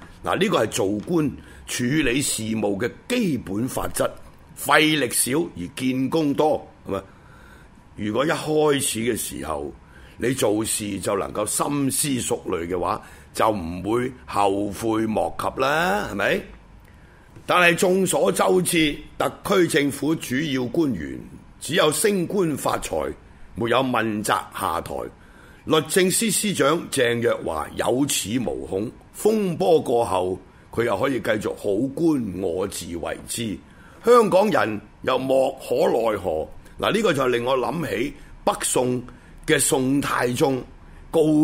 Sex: male